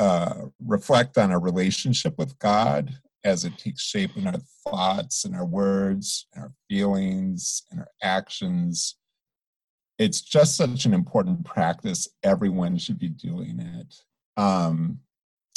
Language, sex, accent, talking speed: English, male, American, 135 wpm